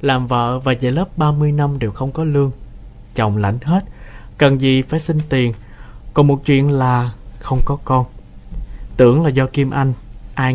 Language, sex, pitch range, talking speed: Vietnamese, male, 115-140 Hz, 190 wpm